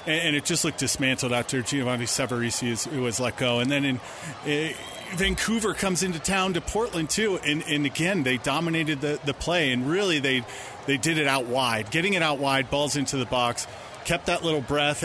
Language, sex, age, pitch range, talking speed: English, male, 30-49, 130-150 Hz, 185 wpm